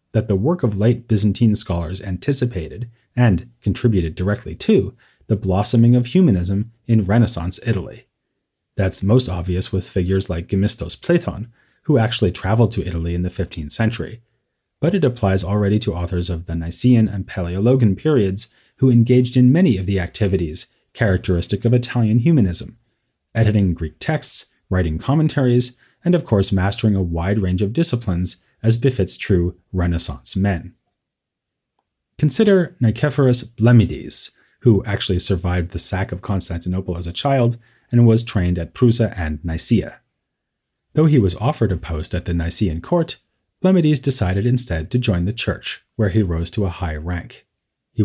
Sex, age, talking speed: male, 30-49, 155 wpm